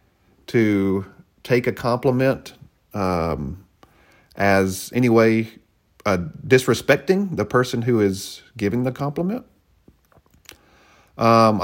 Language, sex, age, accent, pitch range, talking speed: English, male, 40-59, American, 90-115 Hz, 90 wpm